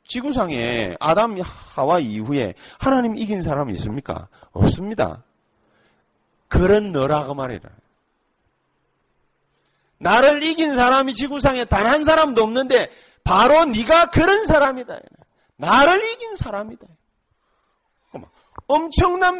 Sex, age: male, 40-59